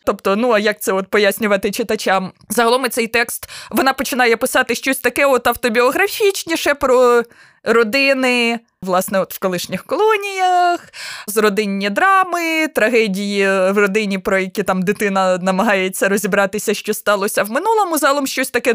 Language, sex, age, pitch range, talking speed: Ukrainian, female, 20-39, 190-245 Hz, 140 wpm